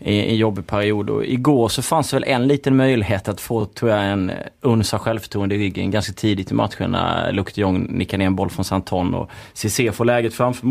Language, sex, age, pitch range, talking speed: Swedish, male, 30-49, 105-130 Hz, 200 wpm